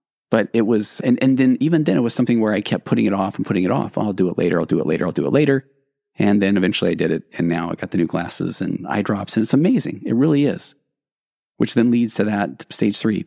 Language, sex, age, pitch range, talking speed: English, male, 30-49, 105-120 Hz, 280 wpm